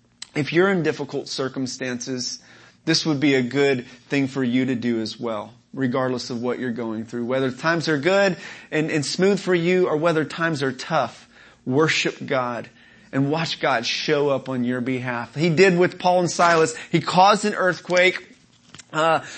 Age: 30-49